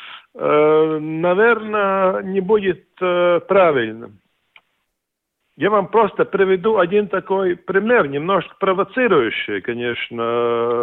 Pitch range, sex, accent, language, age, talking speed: 155-210 Hz, male, Croatian, Russian, 50-69, 80 wpm